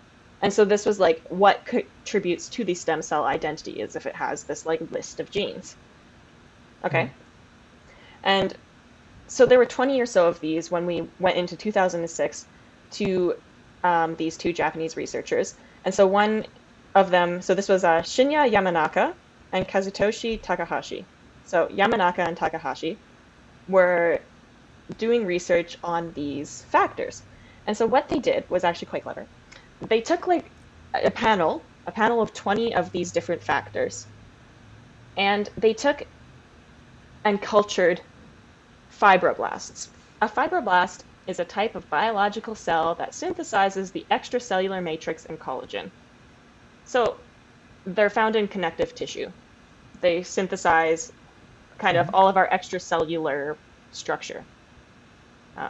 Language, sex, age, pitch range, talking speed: English, female, 10-29, 170-220 Hz, 135 wpm